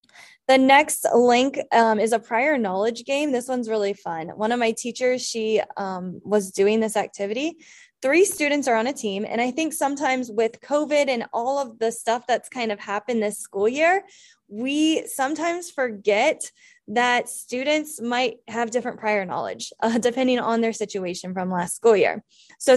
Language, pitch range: English, 220-280 Hz